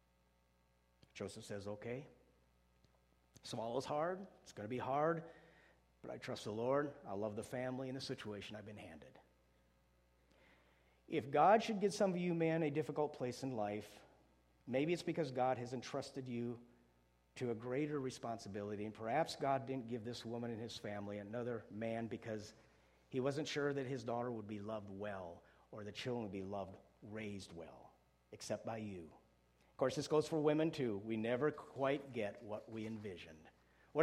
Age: 50-69